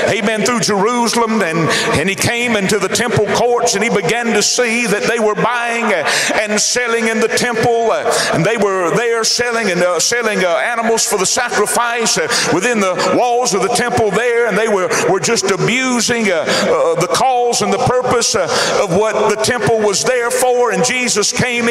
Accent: American